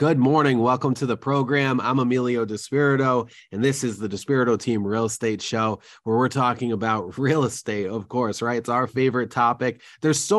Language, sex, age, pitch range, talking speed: English, male, 30-49, 115-145 Hz, 190 wpm